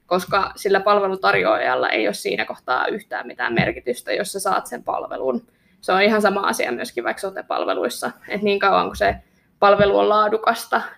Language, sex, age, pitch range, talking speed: Finnish, female, 20-39, 195-220 Hz, 170 wpm